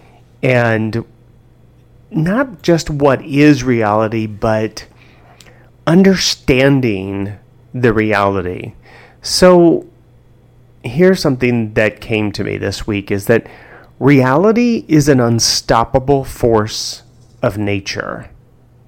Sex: male